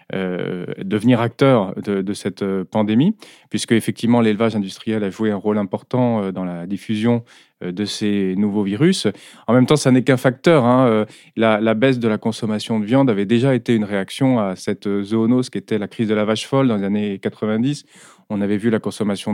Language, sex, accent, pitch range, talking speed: French, male, French, 100-120 Hz, 200 wpm